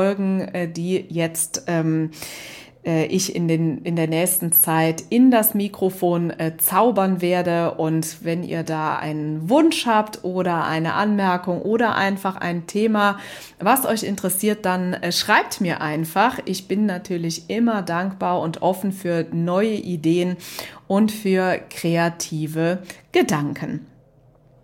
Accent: German